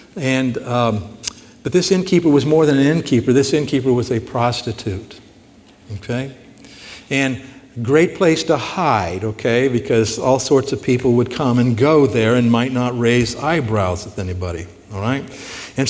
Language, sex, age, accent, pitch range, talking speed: English, male, 60-79, American, 120-155 Hz, 160 wpm